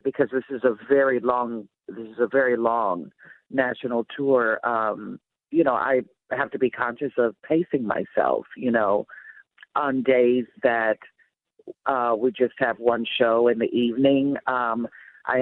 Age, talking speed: 50-69, 155 wpm